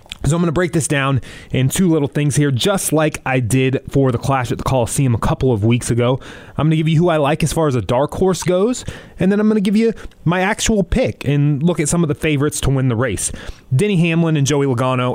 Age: 30-49